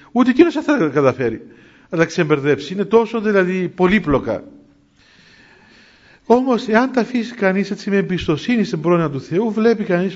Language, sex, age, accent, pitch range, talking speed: Greek, male, 50-69, native, 165-220 Hz, 160 wpm